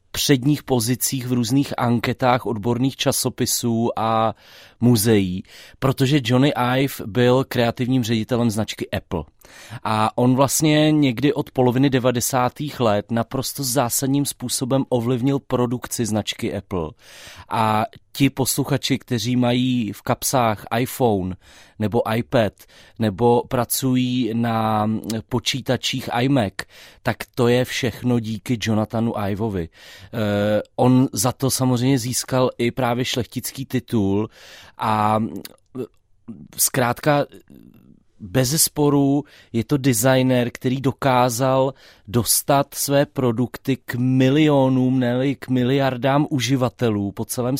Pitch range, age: 110-135 Hz, 30-49